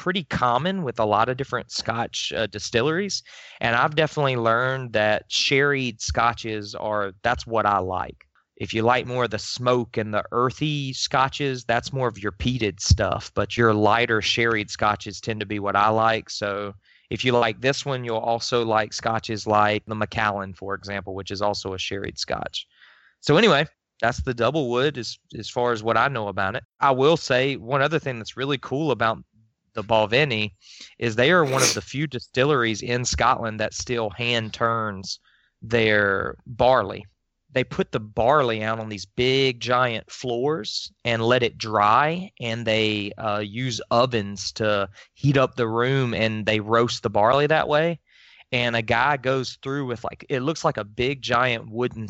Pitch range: 105-130 Hz